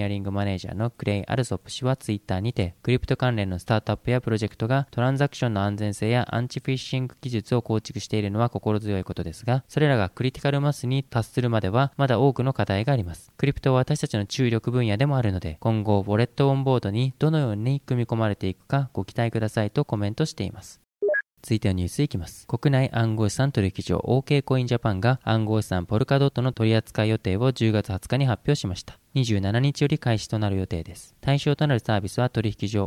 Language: Japanese